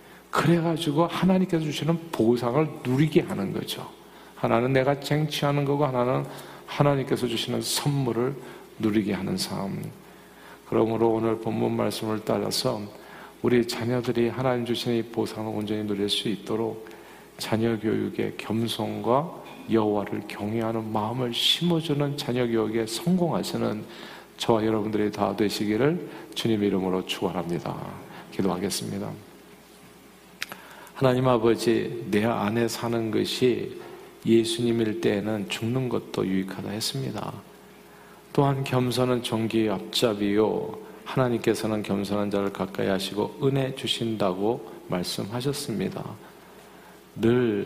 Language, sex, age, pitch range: Korean, male, 40-59, 105-125 Hz